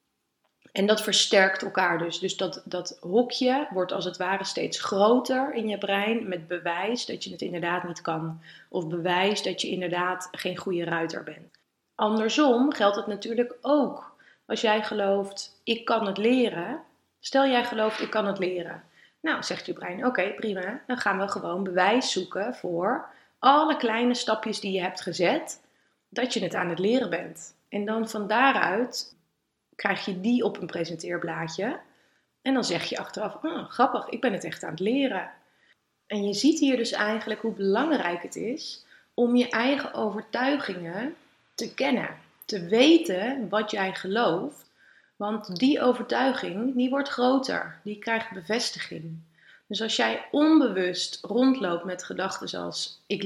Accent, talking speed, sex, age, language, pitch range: Dutch, 160 wpm, female, 20-39, Dutch, 185-240 Hz